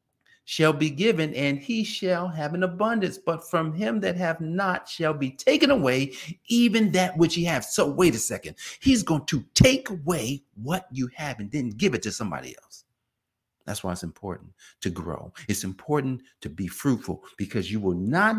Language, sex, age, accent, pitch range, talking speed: English, male, 50-69, American, 95-160 Hz, 190 wpm